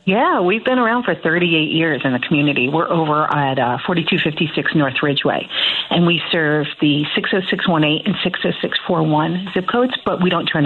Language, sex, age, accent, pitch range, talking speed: English, female, 40-59, American, 160-190 Hz, 170 wpm